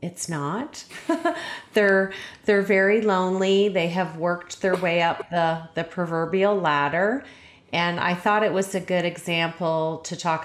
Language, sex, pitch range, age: English, female, 170-210 Hz, 30-49